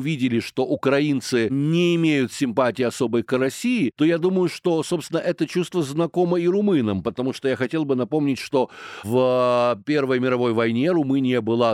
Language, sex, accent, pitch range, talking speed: Ukrainian, male, native, 120-165 Hz, 165 wpm